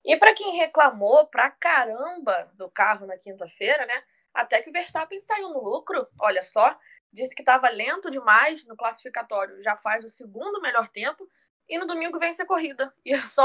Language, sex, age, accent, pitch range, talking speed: Portuguese, female, 20-39, Brazilian, 210-295 Hz, 190 wpm